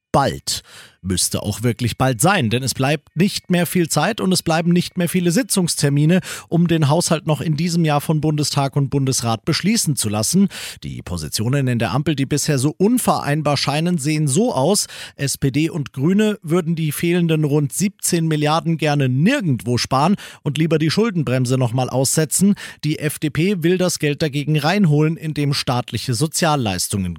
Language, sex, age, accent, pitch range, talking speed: German, male, 40-59, German, 130-175 Hz, 170 wpm